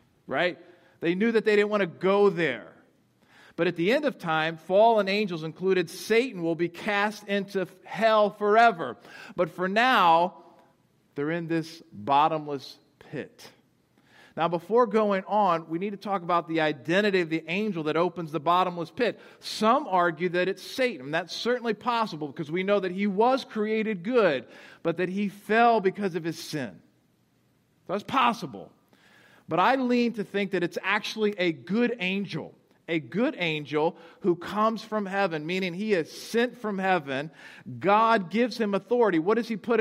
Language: English